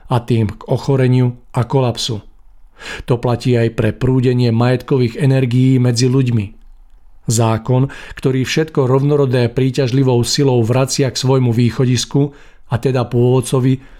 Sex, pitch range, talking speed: male, 120-135 Hz, 120 wpm